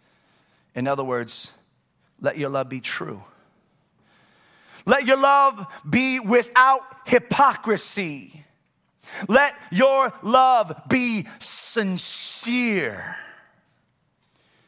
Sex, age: male, 30-49